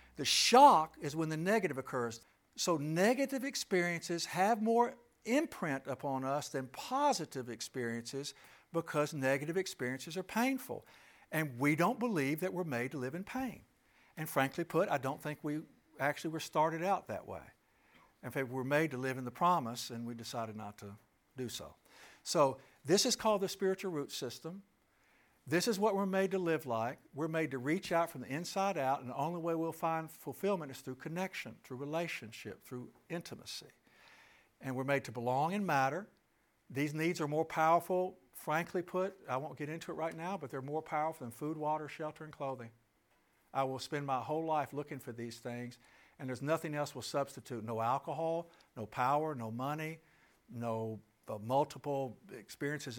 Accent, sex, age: American, male, 60-79